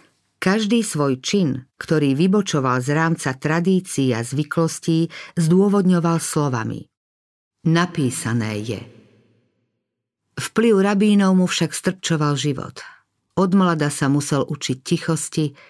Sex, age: female, 50-69